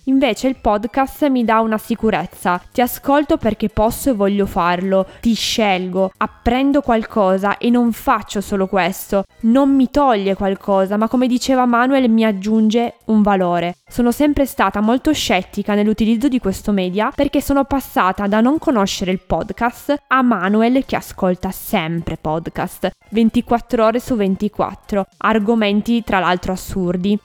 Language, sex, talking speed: Italian, female, 145 wpm